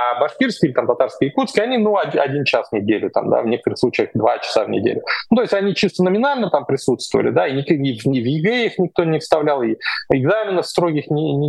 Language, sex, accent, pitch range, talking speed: Russian, male, native, 140-200 Hz, 235 wpm